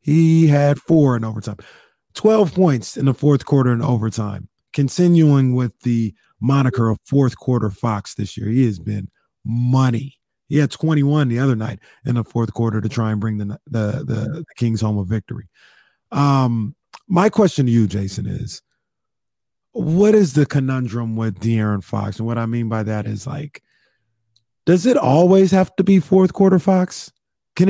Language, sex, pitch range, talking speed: English, male, 115-165 Hz, 175 wpm